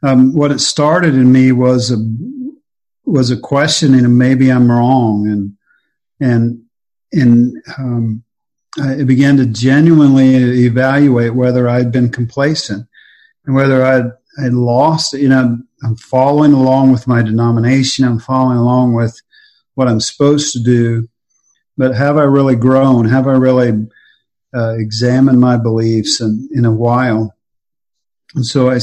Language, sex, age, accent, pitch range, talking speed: English, male, 50-69, American, 120-140 Hz, 145 wpm